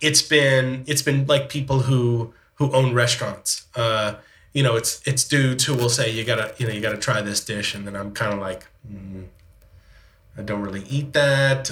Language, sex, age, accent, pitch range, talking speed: English, male, 30-49, American, 110-140 Hz, 205 wpm